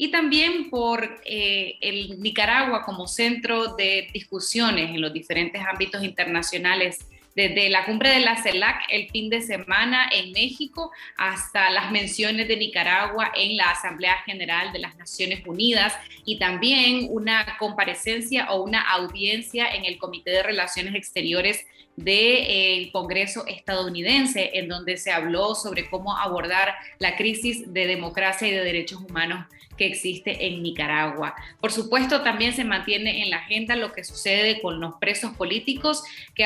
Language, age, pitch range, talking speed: Spanish, 20-39, 185-230 Hz, 150 wpm